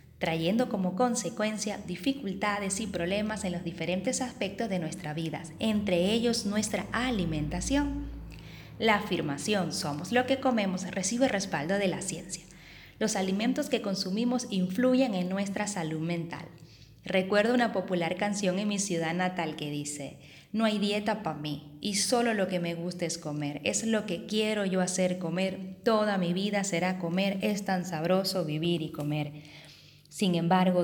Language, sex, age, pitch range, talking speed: Spanish, female, 20-39, 165-205 Hz, 155 wpm